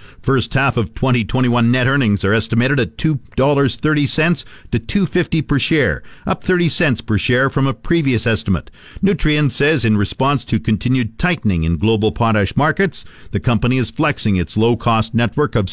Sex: male